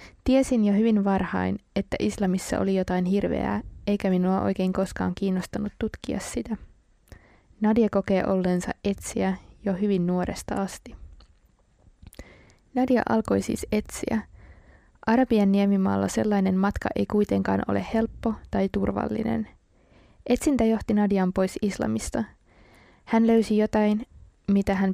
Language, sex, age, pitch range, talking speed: Finnish, female, 20-39, 180-205 Hz, 115 wpm